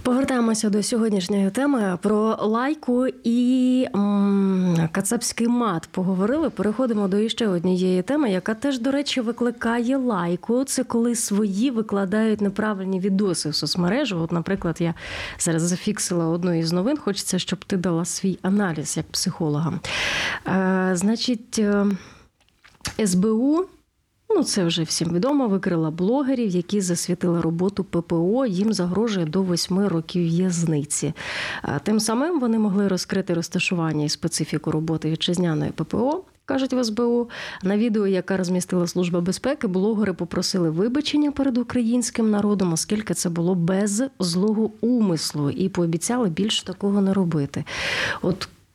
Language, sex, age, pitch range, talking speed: Ukrainian, female, 30-49, 175-235 Hz, 130 wpm